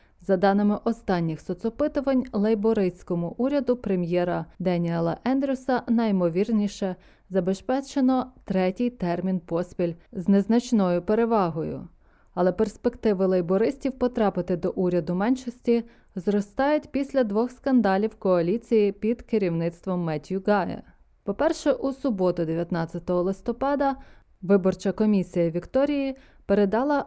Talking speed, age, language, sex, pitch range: 95 wpm, 20-39, Ukrainian, female, 175-235 Hz